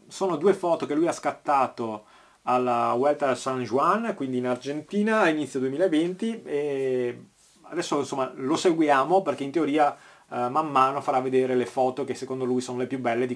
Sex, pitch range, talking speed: male, 125-185 Hz, 180 wpm